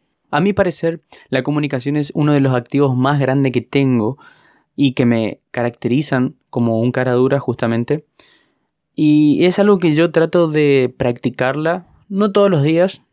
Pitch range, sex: 120-145 Hz, male